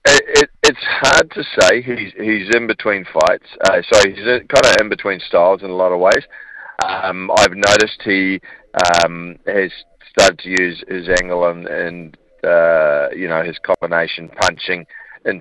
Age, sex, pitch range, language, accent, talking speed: 40-59, male, 85-115 Hz, English, Australian, 175 wpm